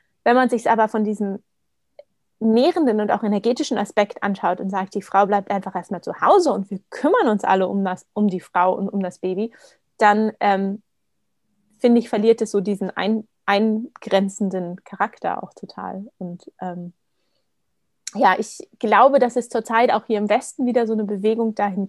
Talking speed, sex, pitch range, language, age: 180 wpm, female, 195-230 Hz, German, 20-39